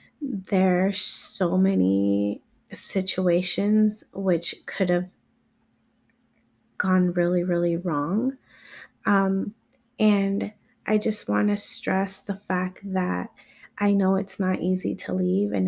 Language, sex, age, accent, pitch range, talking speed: English, female, 30-49, American, 180-205 Hz, 115 wpm